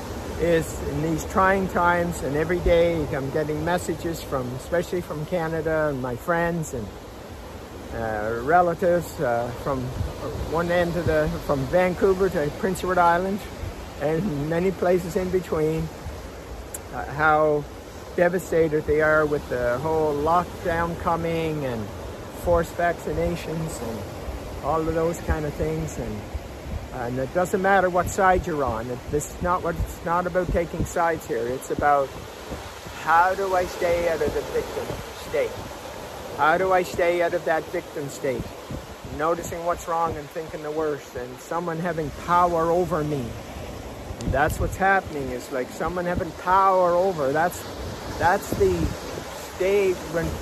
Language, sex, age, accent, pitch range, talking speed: English, male, 50-69, American, 125-175 Hz, 150 wpm